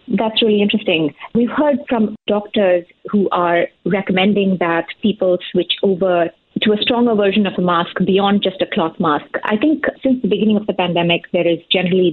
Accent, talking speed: Indian, 185 wpm